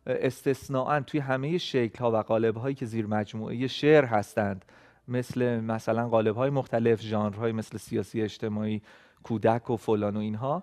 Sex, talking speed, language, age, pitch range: male, 150 wpm, Persian, 30-49, 110-140 Hz